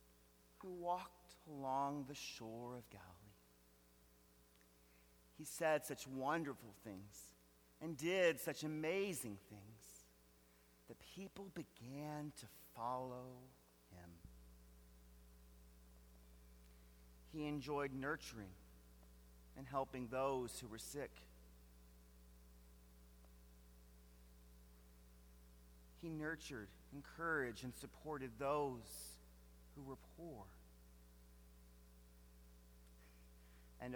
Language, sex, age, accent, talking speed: English, male, 40-59, American, 70 wpm